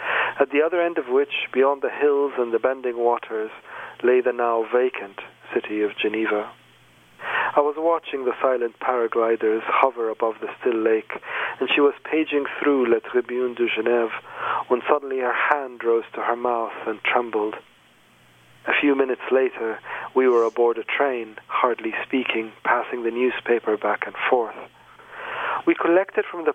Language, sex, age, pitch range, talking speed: English, male, 40-59, 115-155 Hz, 160 wpm